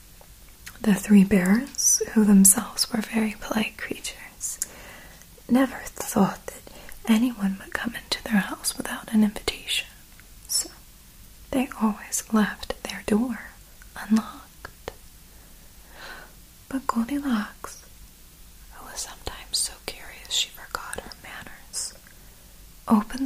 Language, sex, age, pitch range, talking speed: English, female, 20-39, 200-250 Hz, 105 wpm